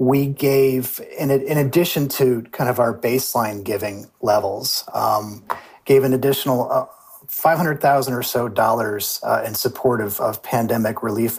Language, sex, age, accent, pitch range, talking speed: English, male, 40-59, American, 110-130 Hz, 135 wpm